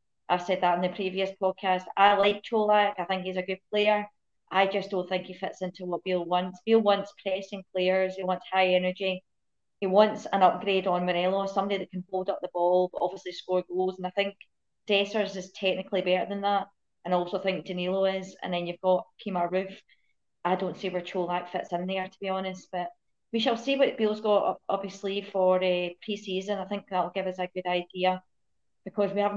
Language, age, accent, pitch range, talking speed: English, 30-49, British, 180-205 Hz, 215 wpm